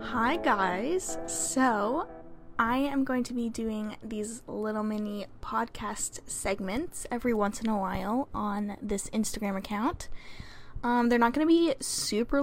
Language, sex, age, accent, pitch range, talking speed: English, female, 10-29, American, 210-260 Hz, 145 wpm